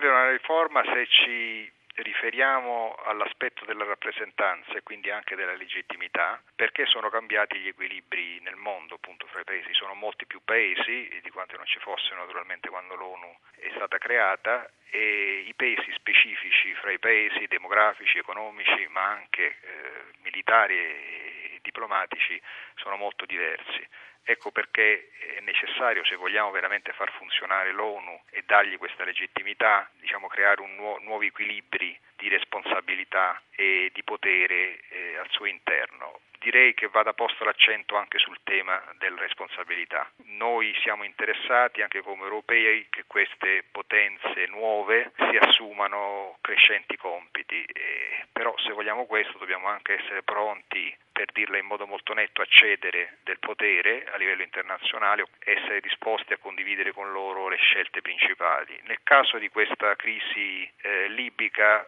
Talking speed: 145 wpm